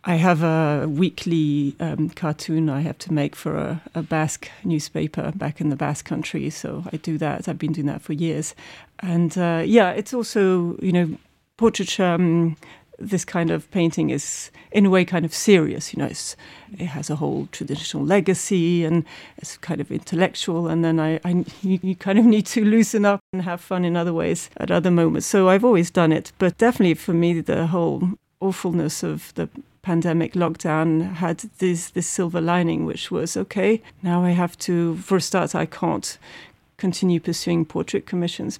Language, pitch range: English, 160-185 Hz